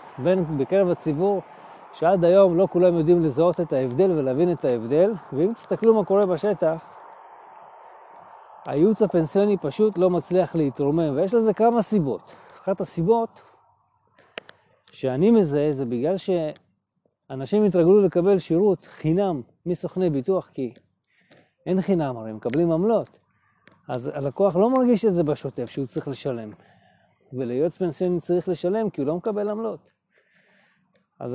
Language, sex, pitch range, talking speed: Hebrew, male, 155-200 Hz, 130 wpm